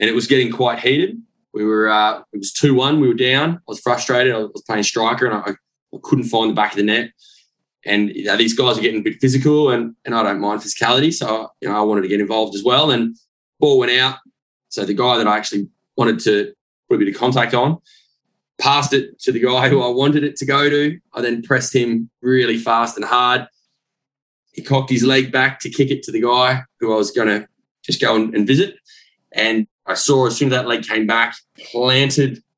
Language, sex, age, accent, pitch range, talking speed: English, male, 20-39, Australian, 110-135 Hz, 235 wpm